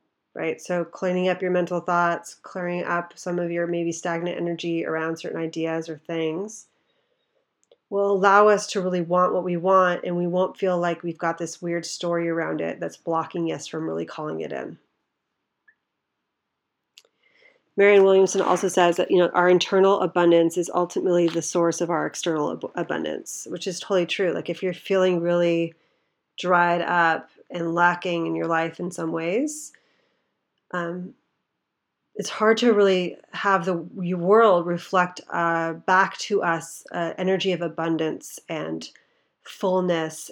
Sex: female